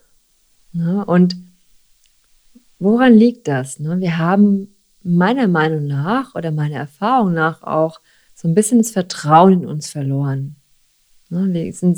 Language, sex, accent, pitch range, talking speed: German, female, German, 160-200 Hz, 120 wpm